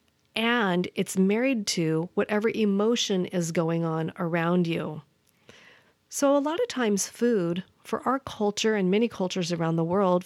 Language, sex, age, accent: English, female, 40-59, American